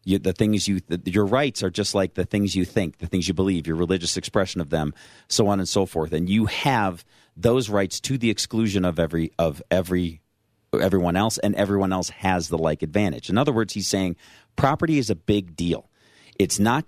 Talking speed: 215 wpm